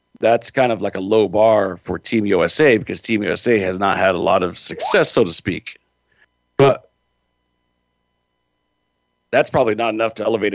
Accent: American